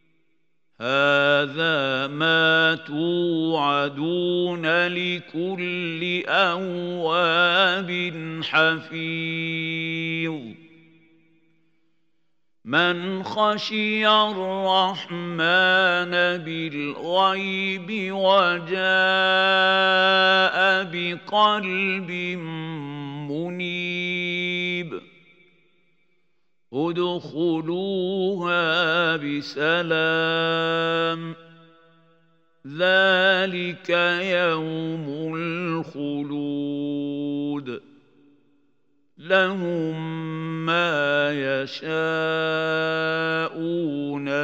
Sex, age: male, 50-69